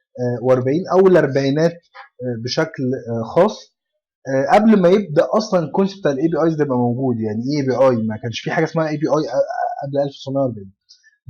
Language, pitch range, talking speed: Arabic, 135-190 Hz, 165 wpm